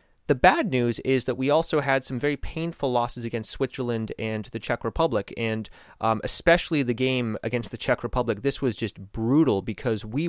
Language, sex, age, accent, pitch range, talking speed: English, male, 30-49, American, 100-120 Hz, 190 wpm